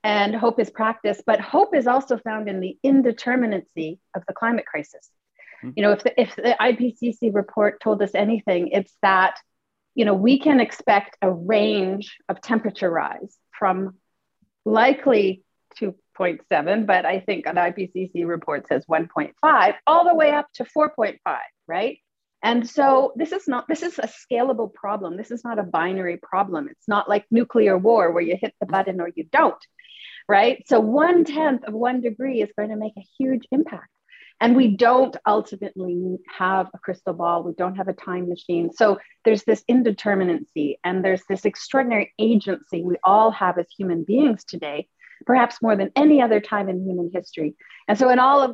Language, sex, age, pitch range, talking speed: English, female, 30-49, 185-245 Hz, 175 wpm